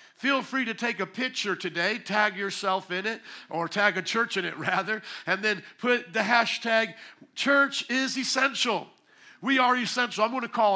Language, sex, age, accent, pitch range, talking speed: English, male, 50-69, American, 180-225 Hz, 185 wpm